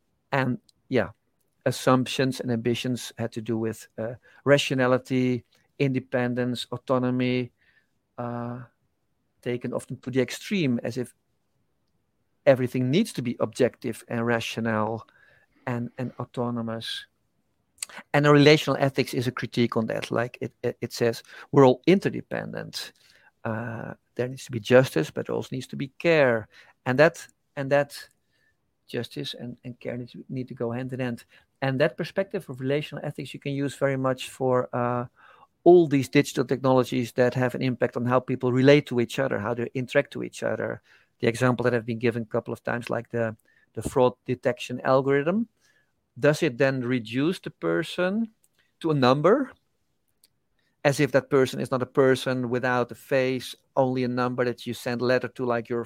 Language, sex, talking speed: English, male, 170 wpm